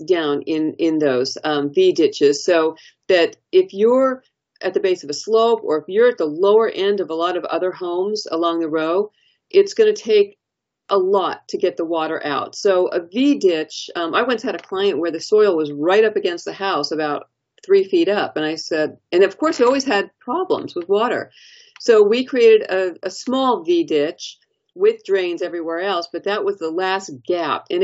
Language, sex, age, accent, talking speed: English, female, 40-59, American, 205 wpm